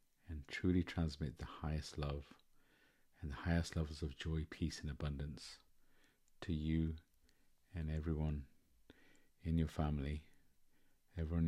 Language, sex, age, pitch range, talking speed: English, male, 50-69, 65-90 Hz, 115 wpm